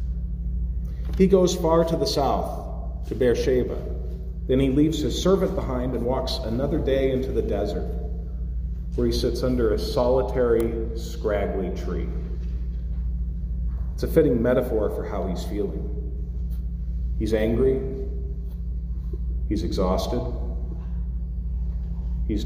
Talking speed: 110 wpm